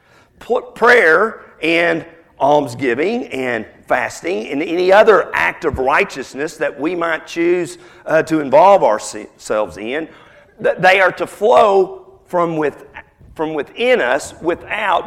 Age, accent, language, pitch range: 50-69, American, English, 145-205 Hz